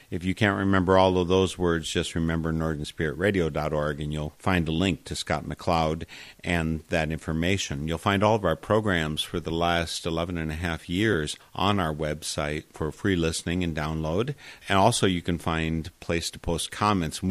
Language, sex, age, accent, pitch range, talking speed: English, male, 50-69, American, 80-95 Hz, 185 wpm